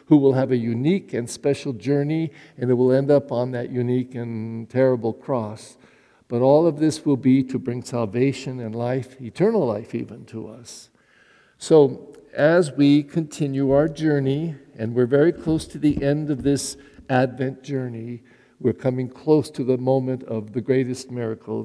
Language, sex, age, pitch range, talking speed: English, male, 60-79, 125-165 Hz, 170 wpm